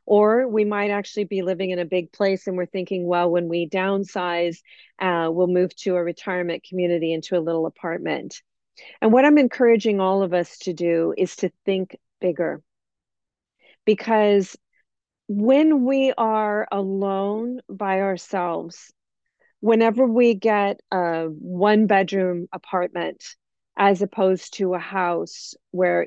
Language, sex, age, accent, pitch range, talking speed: English, female, 40-59, American, 175-210 Hz, 140 wpm